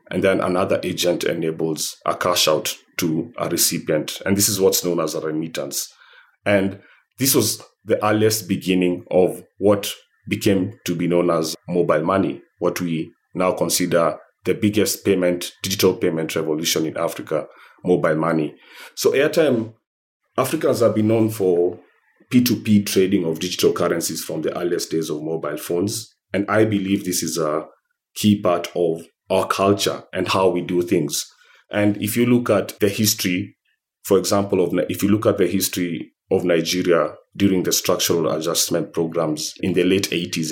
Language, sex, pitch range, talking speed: English, male, 85-100 Hz, 165 wpm